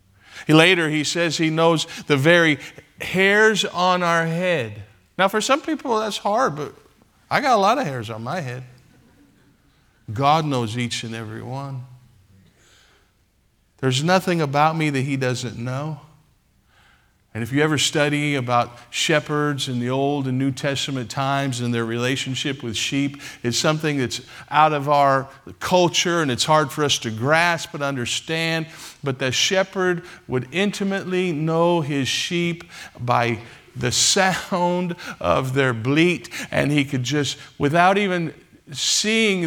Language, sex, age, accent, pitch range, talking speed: English, male, 50-69, American, 120-170 Hz, 145 wpm